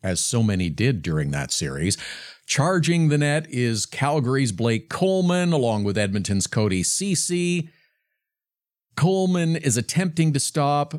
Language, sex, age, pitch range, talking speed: English, male, 50-69, 115-150 Hz, 130 wpm